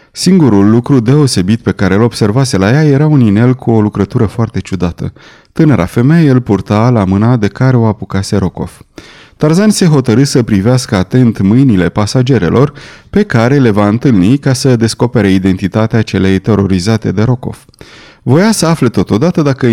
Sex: male